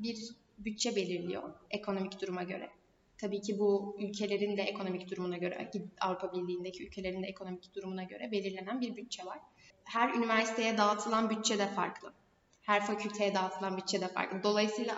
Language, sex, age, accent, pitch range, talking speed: Turkish, female, 10-29, native, 195-235 Hz, 150 wpm